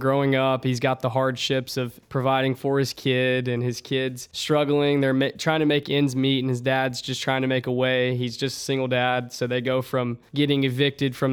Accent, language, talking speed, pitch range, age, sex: American, English, 220 wpm, 125-135 Hz, 20-39, male